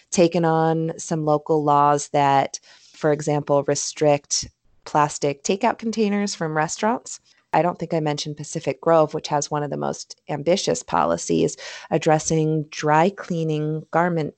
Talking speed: 140 wpm